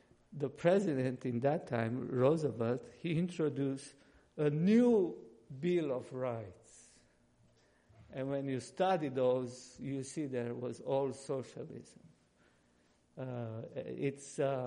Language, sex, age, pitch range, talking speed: English, male, 50-69, 125-150 Hz, 105 wpm